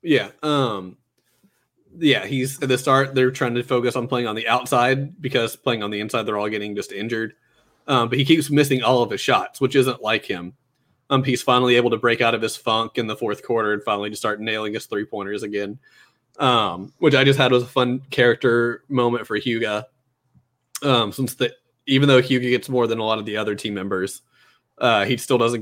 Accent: American